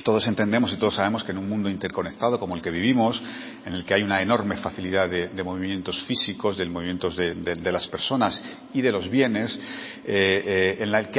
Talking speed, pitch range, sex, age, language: 220 wpm, 95-115 Hz, male, 40-59, Spanish